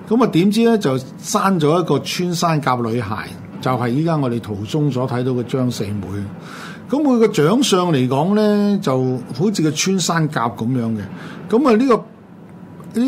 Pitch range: 125-185 Hz